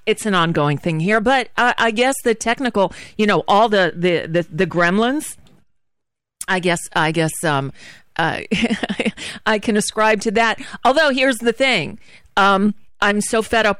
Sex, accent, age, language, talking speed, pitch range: female, American, 40-59, English, 170 wpm, 170-215 Hz